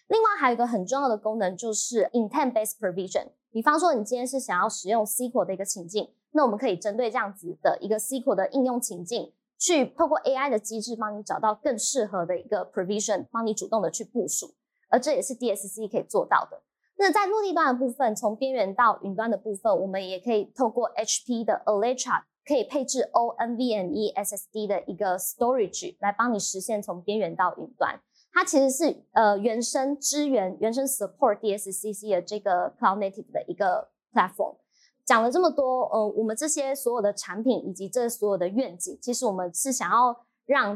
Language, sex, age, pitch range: Chinese, female, 20-39, 205-265 Hz